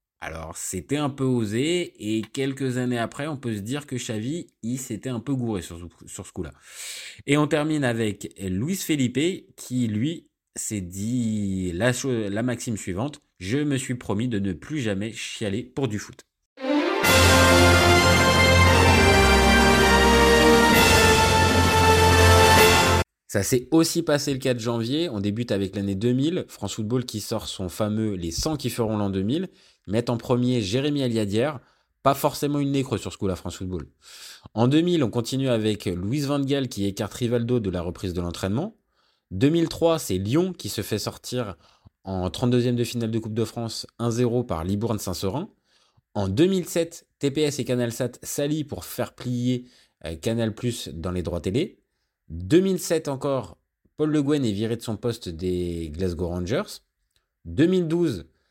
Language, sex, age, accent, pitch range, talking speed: French, male, 20-39, French, 95-130 Hz, 155 wpm